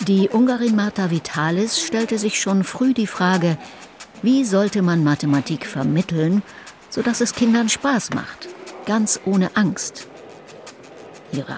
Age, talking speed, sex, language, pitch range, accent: 60-79, 125 wpm, female, German, 155-220 Hz, German